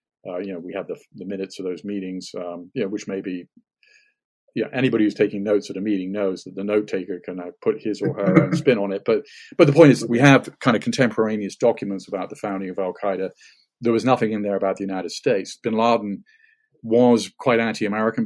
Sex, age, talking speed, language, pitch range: male, 40-59, 235 wpm, English, 95-120 Hz